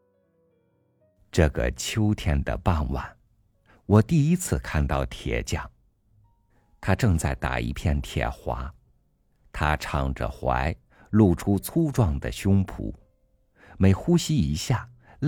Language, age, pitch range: Chinese, 50-69, 75-115 Hz